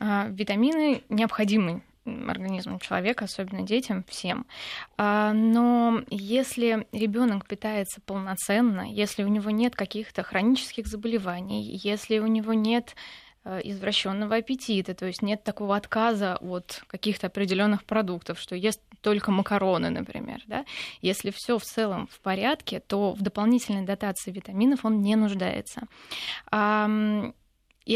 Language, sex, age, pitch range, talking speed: Russian, female, 20-39, 200-230 Hz, 120 wpm